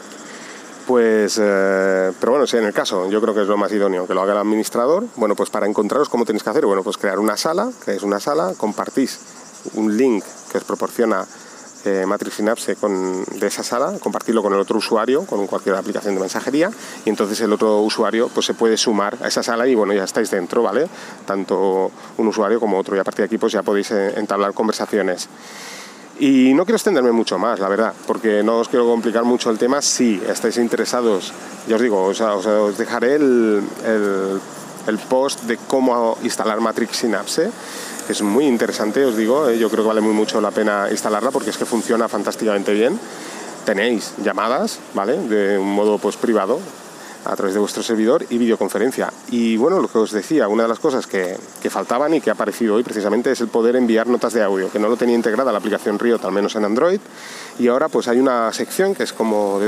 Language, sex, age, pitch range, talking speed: Spanish, male, 30-49, 105-120 Hz, 215 wpm